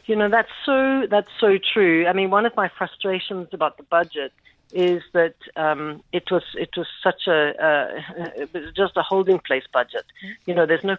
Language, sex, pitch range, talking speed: English, female, 150-185 Hz, 200 wpm